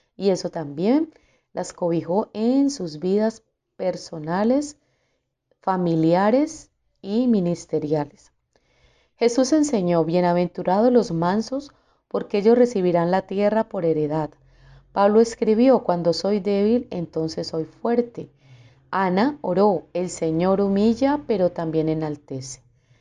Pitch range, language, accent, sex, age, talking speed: 165-220 Hz, Spanish, Colombian, female, 30-49, 105 wpm